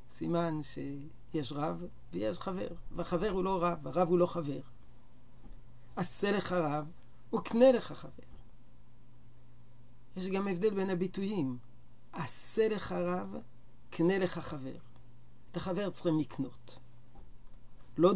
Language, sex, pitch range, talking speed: Hebrew, male, 120-185 Hz, 115 wpm